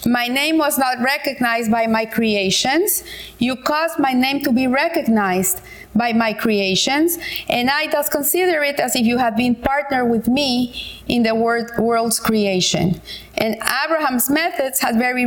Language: English